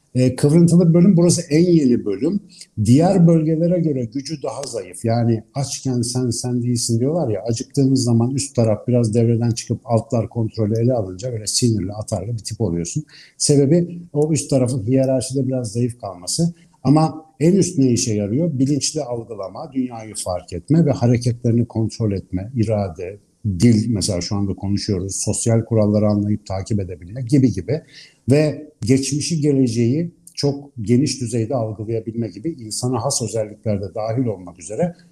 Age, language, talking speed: 60-79, Turkish, 150 wpm